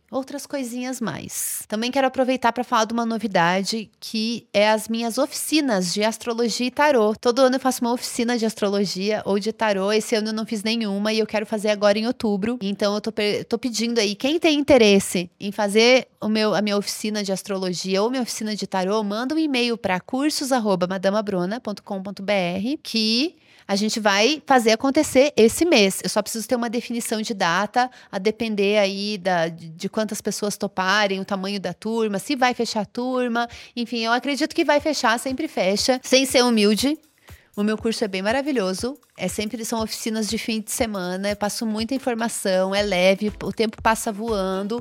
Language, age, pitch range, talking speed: Portuguese, 30-49, 205-245 Hz, 190 wpm